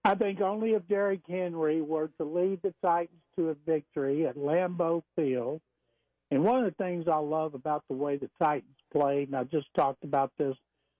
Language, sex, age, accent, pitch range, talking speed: English, male, 60-79, American, 145-195 Hz, 195 wpm